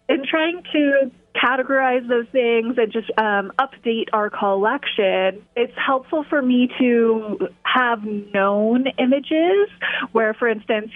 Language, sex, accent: English, female, American